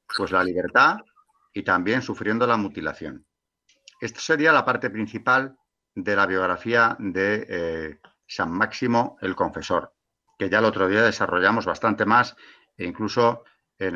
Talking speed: 140 wpm